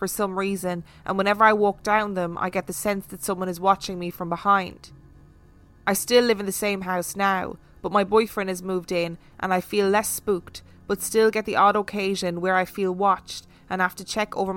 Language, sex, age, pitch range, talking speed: English, female, 20-39, 165-195 Hz, 220 wpm